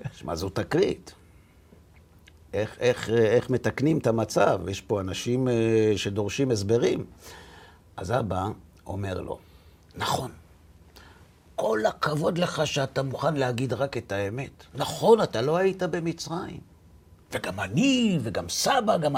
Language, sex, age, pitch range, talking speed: Hebrew, male, 60-79, 90-135 Hz, 120 wpm